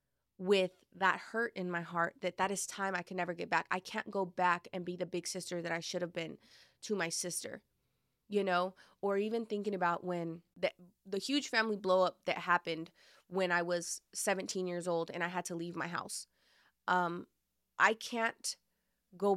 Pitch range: 175-200 Hz